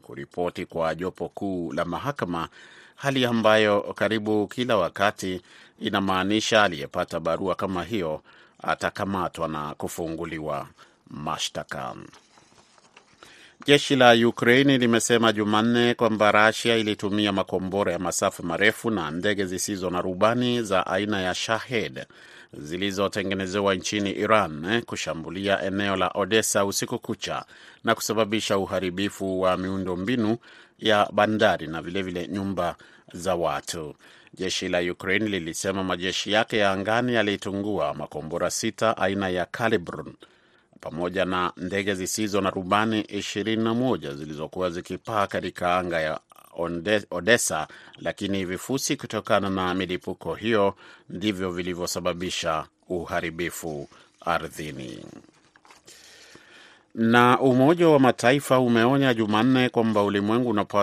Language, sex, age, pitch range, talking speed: Swahili, male, 30-49, 90-110 Hz, 110 wpm